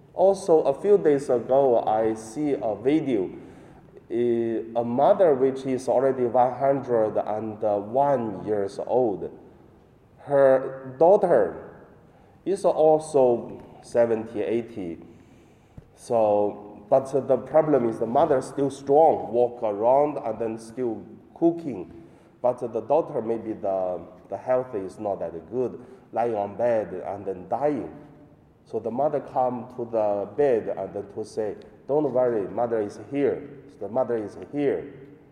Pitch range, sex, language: 115-145 Hz, male, Chinese